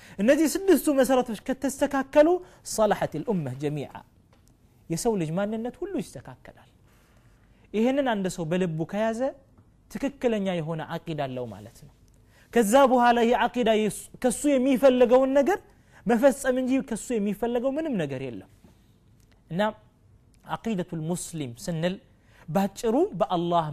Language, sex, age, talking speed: Amharic, male, 30-49, 105 wpm